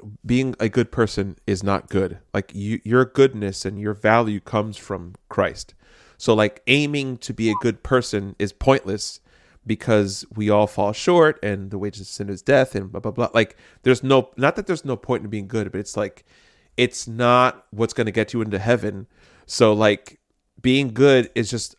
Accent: American